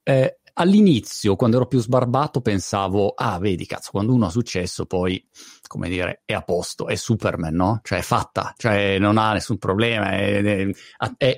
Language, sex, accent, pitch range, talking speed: Italian, male, native, 115-150 Hz, 170 wpm